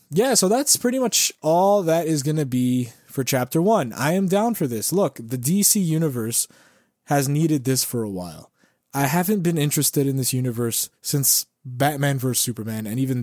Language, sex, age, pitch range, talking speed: English, male, 20-39, 120-145 Hz, 190 wpm